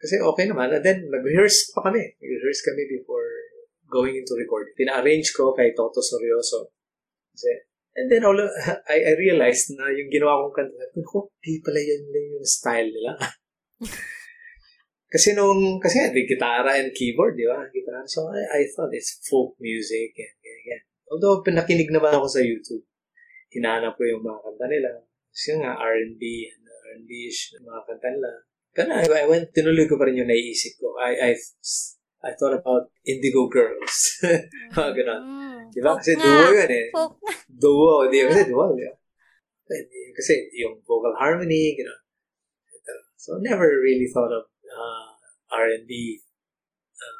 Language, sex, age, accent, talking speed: English, male, 20-39, Filipino, 125 wpm